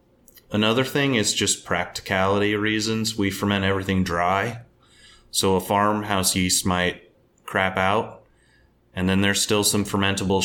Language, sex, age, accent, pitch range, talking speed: English, male, 30-49, American, 90-105 Hz, 130 wpm